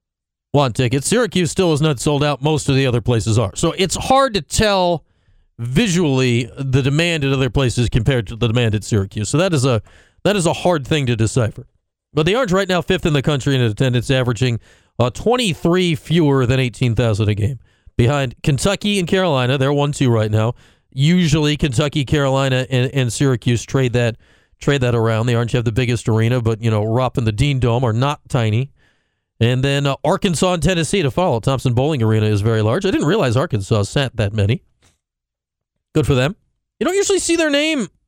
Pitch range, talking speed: 115-165 Hz, 205 wpm